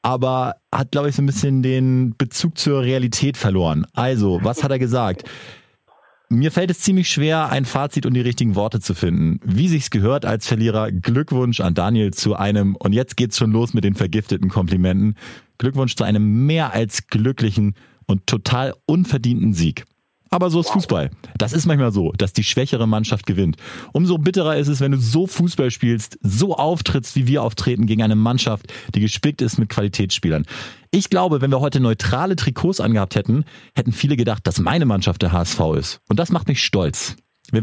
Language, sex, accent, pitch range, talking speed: German, male, German, 110-140 Hz, 190 wpm